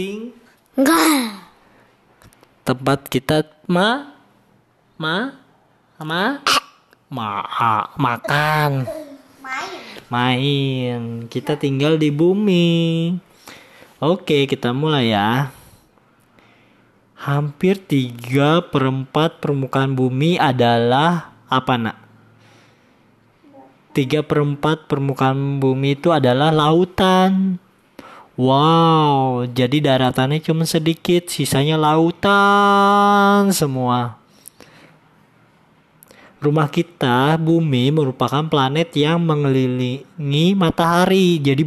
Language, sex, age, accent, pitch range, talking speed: Indonesian, male, 20-39, native, 130-170 Hz, 80 wpm